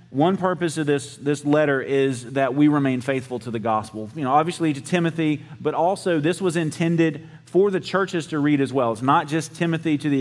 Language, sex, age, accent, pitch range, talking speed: English, male, 30-49, American, 125-160 Hz, 215 wpm